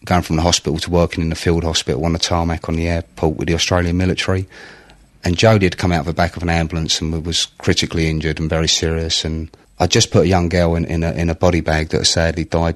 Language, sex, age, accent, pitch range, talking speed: English, male, 30-49, British, 80-90 Hz, 265 wpm